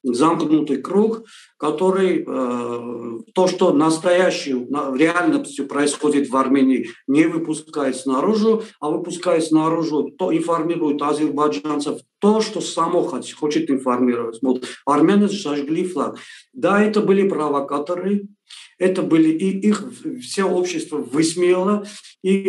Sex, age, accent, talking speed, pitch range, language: male, 50-69, native, 110 wpm, 150-195 Hz, Russian